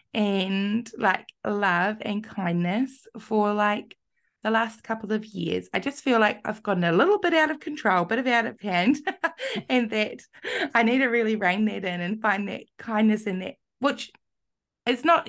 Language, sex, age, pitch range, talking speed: English, female, 20-39, 205-245 Hz, 190 wpm